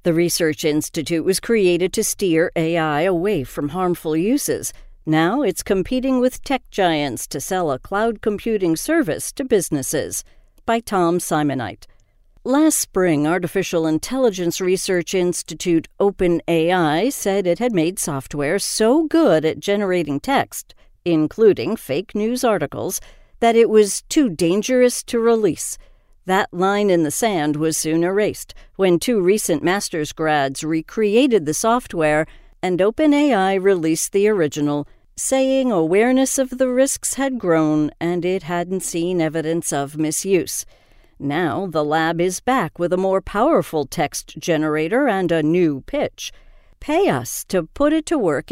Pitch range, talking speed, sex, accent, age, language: 160-225 Hz, 140 wpm, female, American, 50-69, English